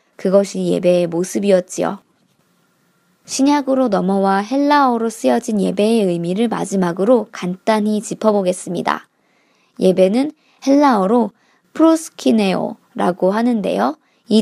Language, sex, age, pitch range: Korean, male, 20-39, 190-245 Hz